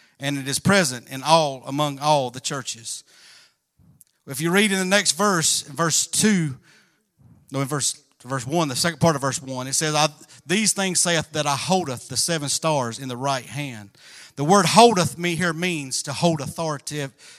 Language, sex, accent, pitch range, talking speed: English, male, American, 140-185 Hz, 195 wpm